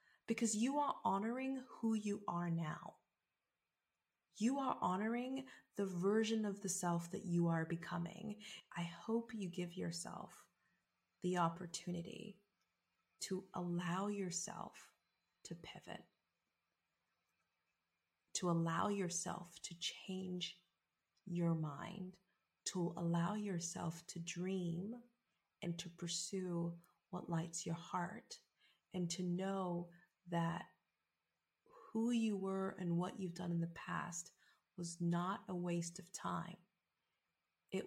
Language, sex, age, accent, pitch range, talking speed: English, female, 30-49, American, 170-195 Hz, 115 wpm